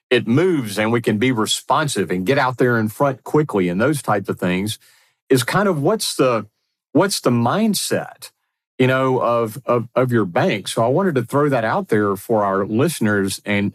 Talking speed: 200 wpm